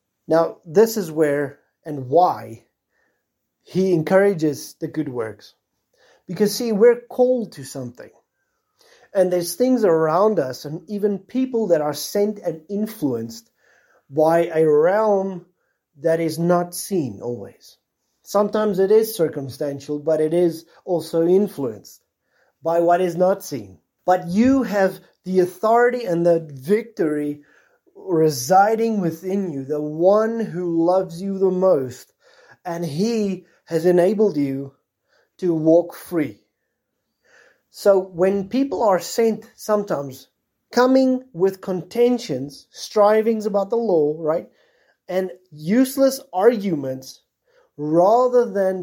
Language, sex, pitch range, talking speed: English, male, 155-210 Hz, 120 wpm